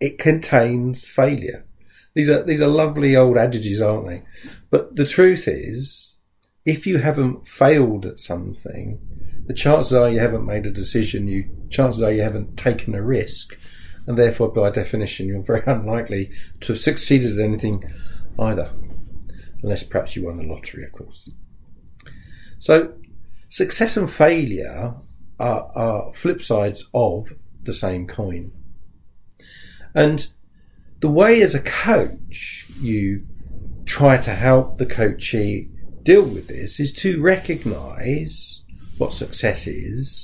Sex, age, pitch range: male, 50-69, 95-130 Hz